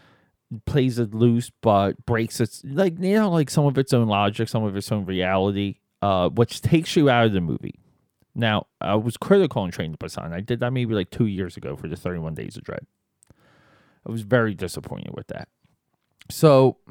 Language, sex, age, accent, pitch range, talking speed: English, male, 30-49, American, 105-140 Hz, 200 wpm